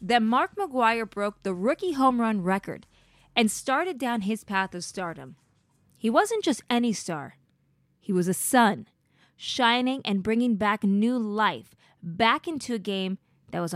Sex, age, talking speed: female, 20-39, 160 wpm